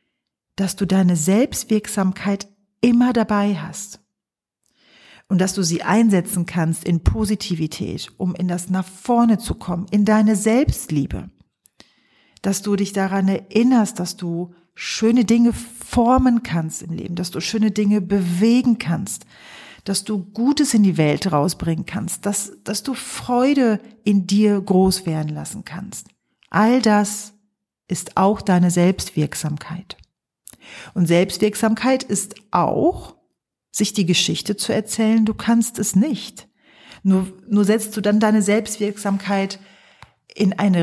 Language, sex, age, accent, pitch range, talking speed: German, female, 40-59, German, 180-215 Hz, 130 wpm